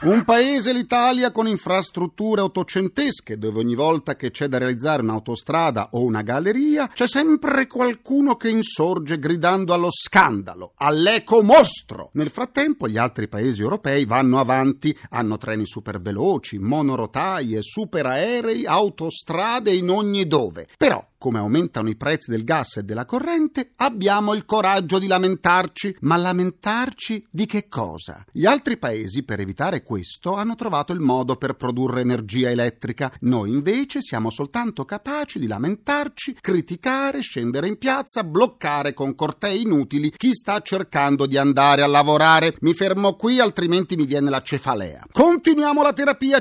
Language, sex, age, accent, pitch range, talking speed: Italian, male, 40-59, native, 135-220 Hz, 145 wpm